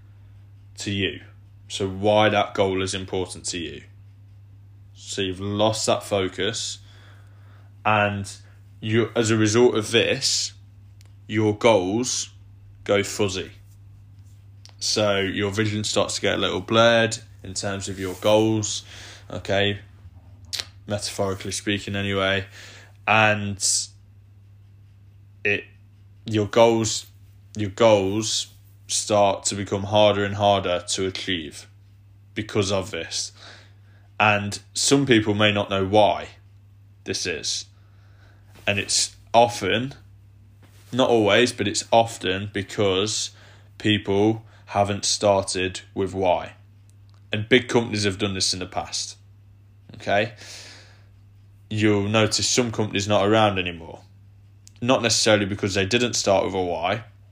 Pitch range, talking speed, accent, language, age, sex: 100-105 Hz, 115 wpm, British, English, 10-29, male